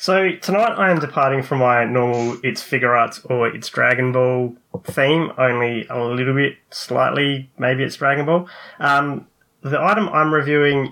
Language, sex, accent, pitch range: English, male, Australian, 120-145 Hz